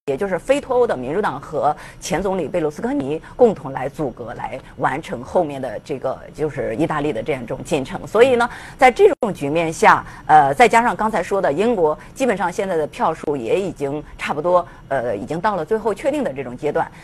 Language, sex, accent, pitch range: Chinese, female, native, 150-250 Hz